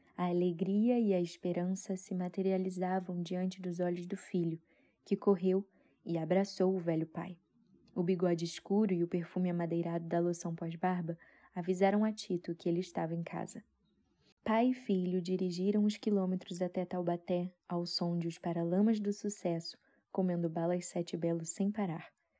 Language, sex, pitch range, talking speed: Portuguese, female, 175-195 Hz, 155 wpm